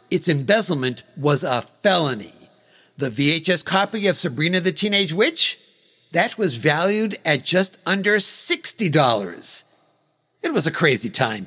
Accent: American